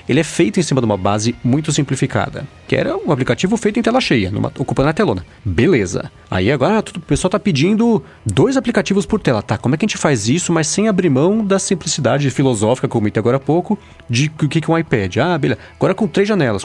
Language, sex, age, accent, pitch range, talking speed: Portuguese, male, 30-49, Brazilian, 115-185 Hz, 240 wpm